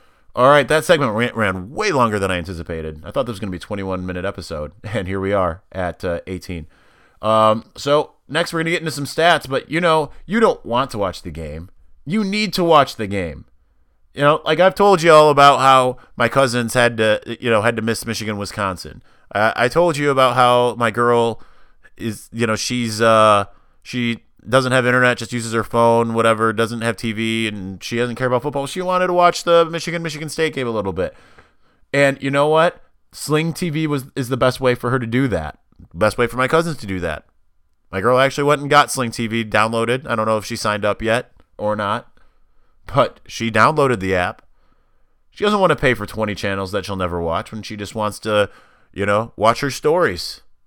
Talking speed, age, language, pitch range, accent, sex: 220 wpm, 30-49, English, 105-140 Hz, American, male